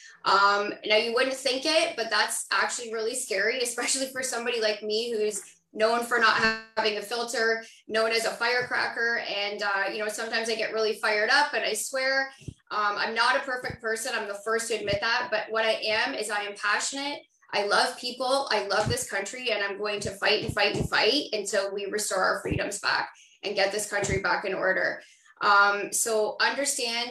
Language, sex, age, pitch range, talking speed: English, female, 10-29, 210-245 Hz, 205 wpm